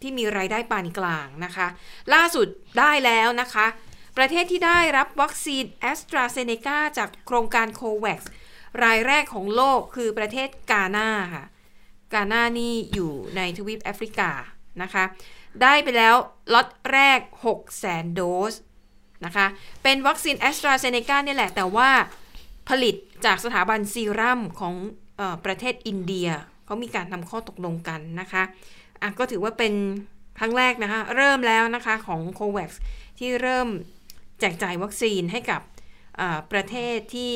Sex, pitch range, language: female, 190-245 Hz, Thai